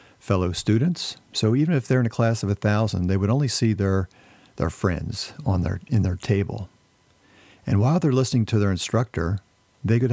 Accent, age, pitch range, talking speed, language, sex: American, 50-69, 100-125 Hz, 190 wpm, English, male